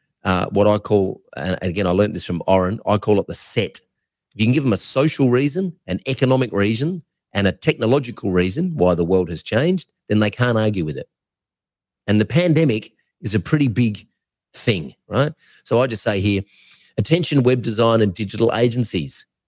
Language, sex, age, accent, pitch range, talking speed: English, male, 30-49, Australian, 95-125 Hz, 190 wpm